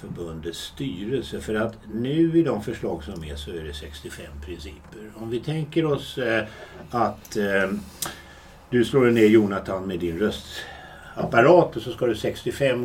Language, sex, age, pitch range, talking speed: Swedish, male, 60-79, 80-125 Hz, 150 wpm